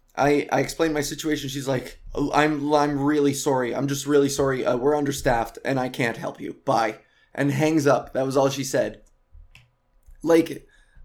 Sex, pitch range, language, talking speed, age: male, 140-205 Hz, English, 180 wpm, 20-39